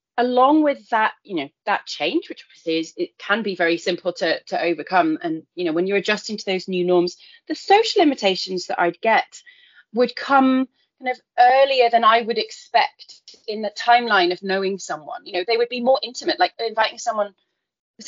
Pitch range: 190-260 Hz